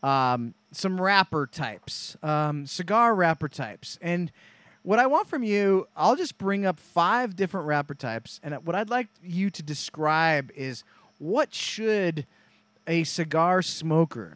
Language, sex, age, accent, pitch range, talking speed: English, male, 30-49, American, 150-195 Hz, 145 wpm